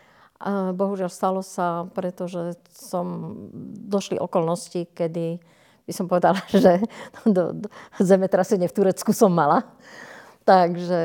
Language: Slovak